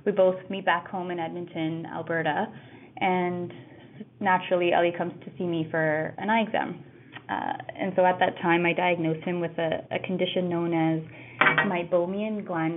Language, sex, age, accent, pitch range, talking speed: English, female, 20-39, American, 165-190 Hz, 170 wpm